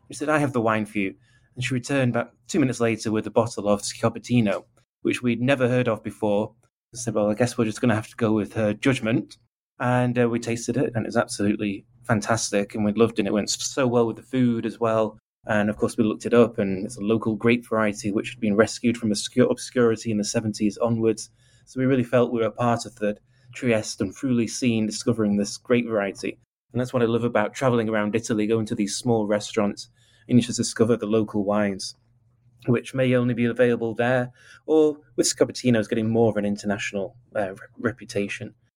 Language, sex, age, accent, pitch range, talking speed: English, male, 20-39, British, 110-125 Hz, 225 wpm